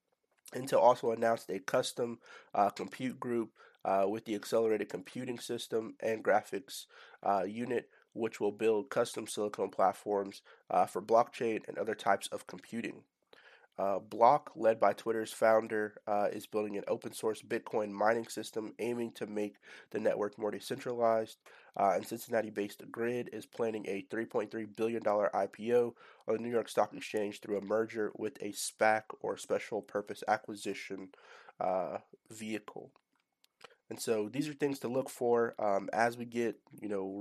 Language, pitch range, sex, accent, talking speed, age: English, 105-115 Hz, male, American, 150 wpm, 30-49